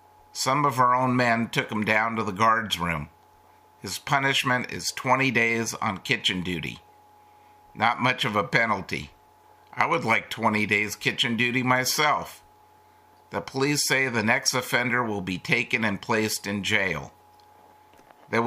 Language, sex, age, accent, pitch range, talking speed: English, male, 50-69, American, 105-130 Hz, 155 wpm